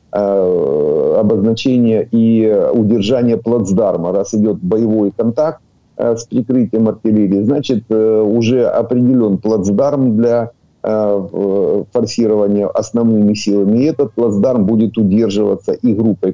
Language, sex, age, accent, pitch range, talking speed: Ukrainian, male, 50-69, native, 100-125 Hz, 95 wpm